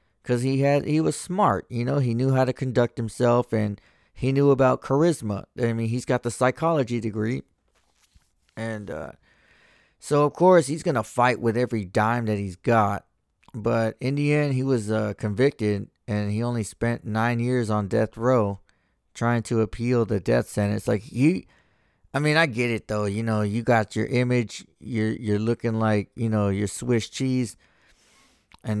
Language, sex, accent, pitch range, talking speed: English, male, American, 105-125 Hz, 185 wpm